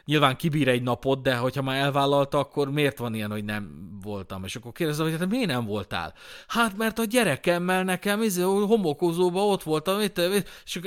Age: 30-49